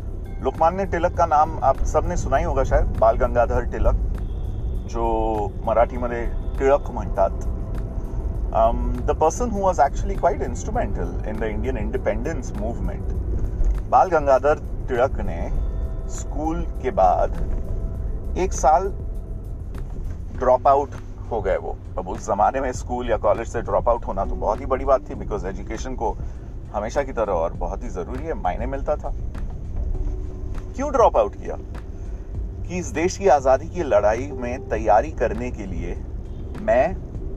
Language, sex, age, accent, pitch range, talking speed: Hindi, male, 30-49, native, 95-130 Hz, 140 wpm